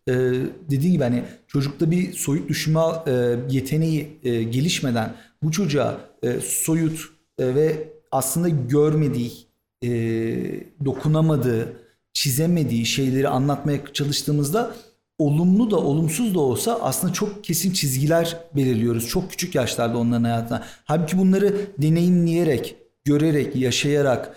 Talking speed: 110 wpm